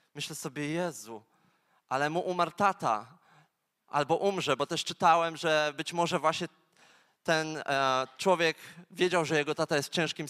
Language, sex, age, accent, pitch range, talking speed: Polish, male, 20-39, native, 145-175 Hz, 145 wpm